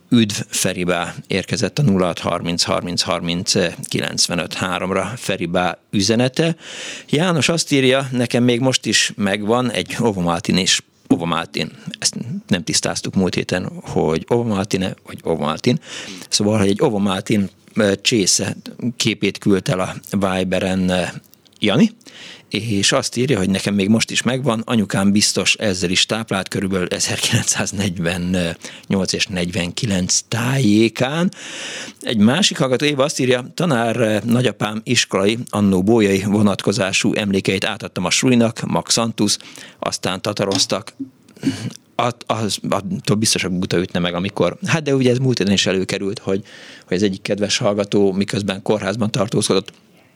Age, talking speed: 50-69, 125 wpm